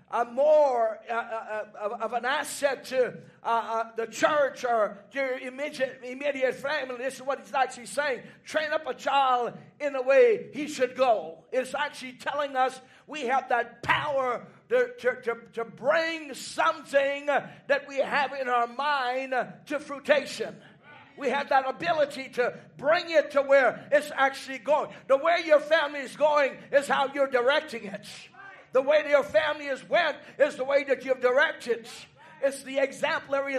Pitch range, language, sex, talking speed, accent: 250-290 Hz, English, male, 170 wpm, American